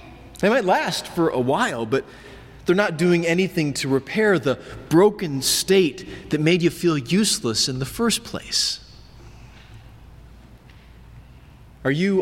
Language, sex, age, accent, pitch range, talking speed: English, male, 30-49, American, 130-175 Hz, 135 wpm